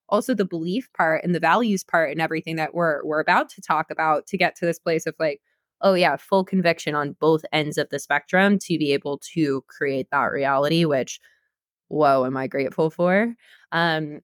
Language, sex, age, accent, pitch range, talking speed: English, female, 20-39, American, 155-180 Hz, 200 wpm